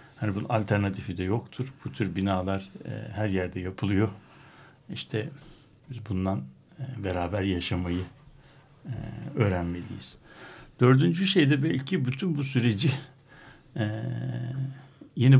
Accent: native